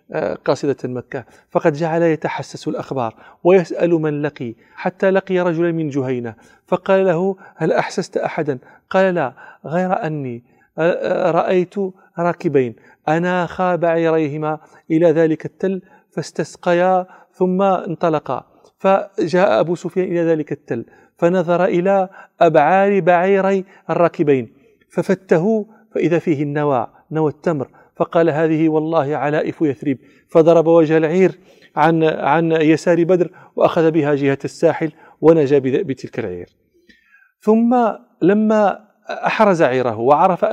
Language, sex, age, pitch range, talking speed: Arabic, male, 40-59, 150-185 Hz, 110 wpm